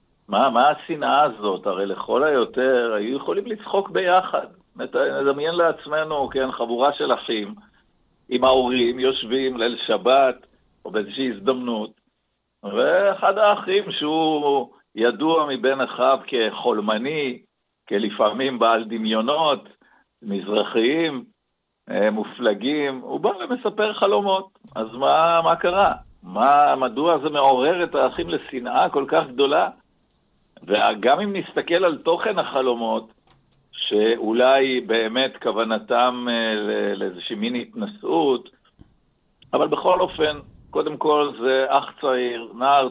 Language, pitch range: Hebrew, 110-155 Hz